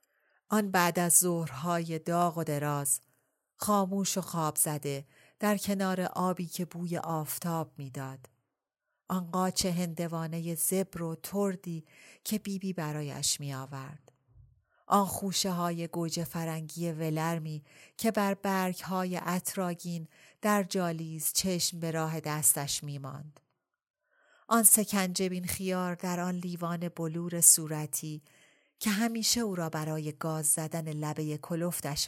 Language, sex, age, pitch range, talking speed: Persian, female, 40-59, 145-185 Hz, 120 wpm